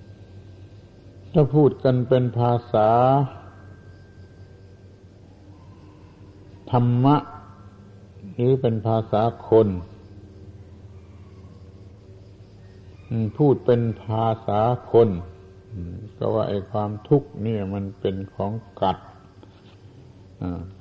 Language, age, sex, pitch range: Thai, 60-79, male, 95-120 Hz